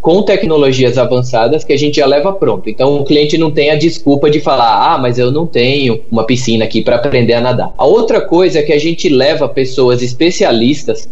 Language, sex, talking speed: Portuguese, male, 215 wpm